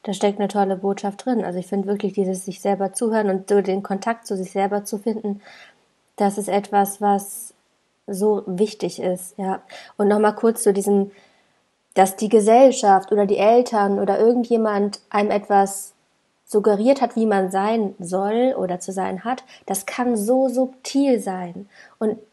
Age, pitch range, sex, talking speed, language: 20-39, 200-225 Hz, female, 165 wpm, German